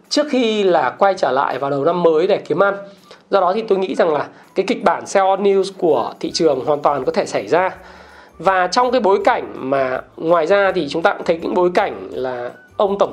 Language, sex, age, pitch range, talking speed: Vietnamese, male, 20-39, 180-215 Hz, 245 wpm